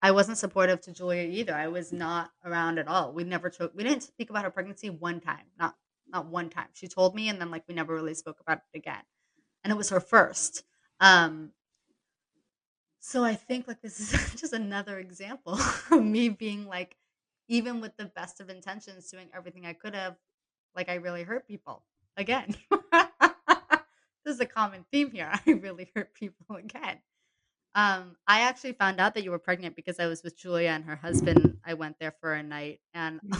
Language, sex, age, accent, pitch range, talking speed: English, female, 20-39, American, 180-240 Hz, 200 wpm